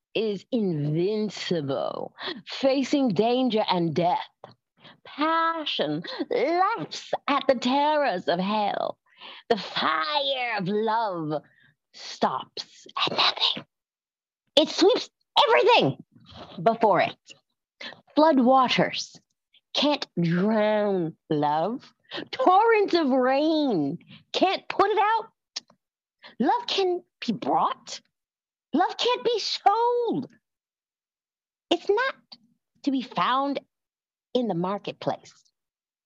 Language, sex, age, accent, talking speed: English, female, 40-59, American, 90 wpm